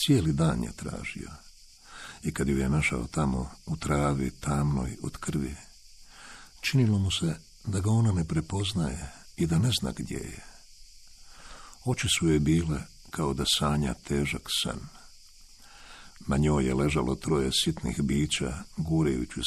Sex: male